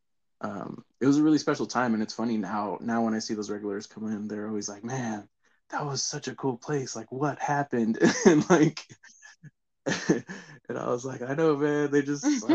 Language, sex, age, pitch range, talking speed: English, male, 20-39, 110-145 Hz, 210 wpm